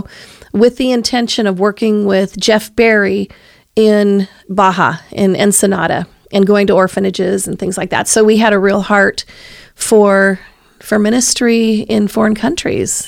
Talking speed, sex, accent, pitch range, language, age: 145 wpm, female, American, 200-235 Hz, English, 40-59